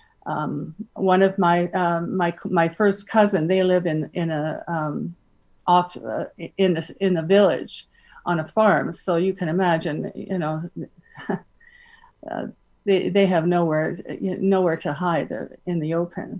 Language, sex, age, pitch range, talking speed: English, female, 50-69, 170-195 Hz, 155 wpm